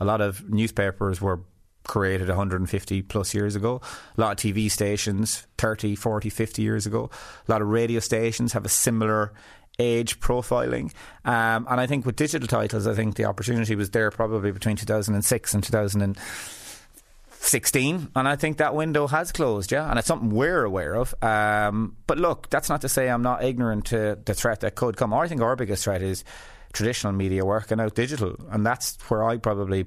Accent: Irish